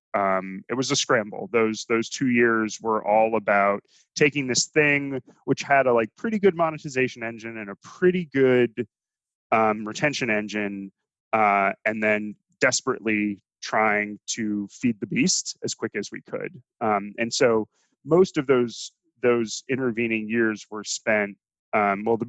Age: 20-39